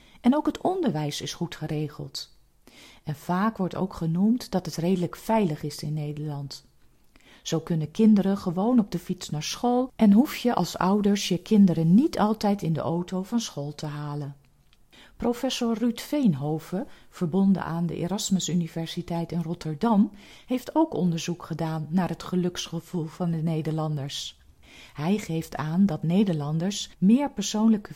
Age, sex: 40-59, female